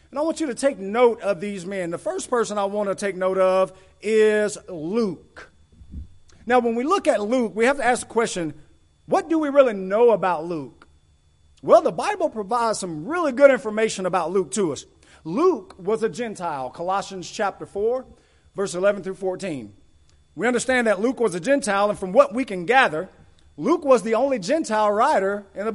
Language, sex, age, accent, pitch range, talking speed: English, male, 40-59, American, 175-240 Hz, 195 wpm